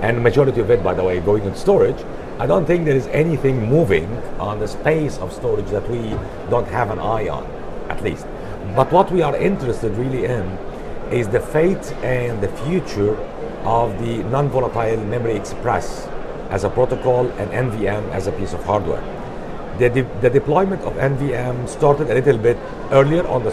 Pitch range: 105-140 Hz